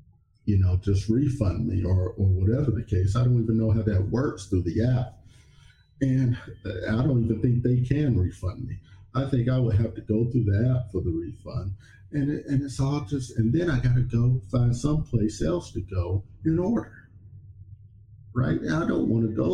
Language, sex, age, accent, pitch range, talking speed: English, male, 50-69, American, 100-120 Hz, 200 wpm